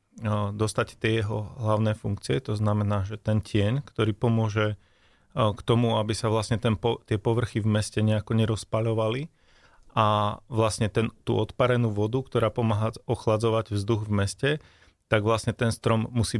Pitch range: 105-120 Hz